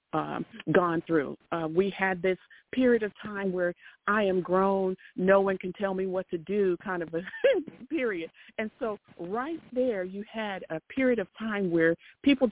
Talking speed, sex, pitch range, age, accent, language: 180 wpm, female, 170-215 Hz, 50-69, American, English